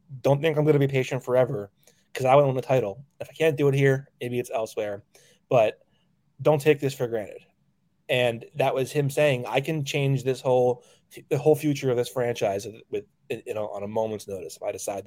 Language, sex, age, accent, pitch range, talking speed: English, male, 20-39, American, 115-150 Hz, 220 wpm